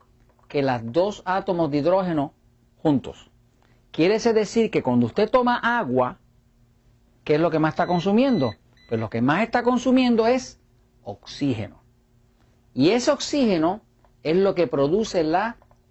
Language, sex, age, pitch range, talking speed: Spanish, male, 50-69, 120-180 Hz, 145 wpm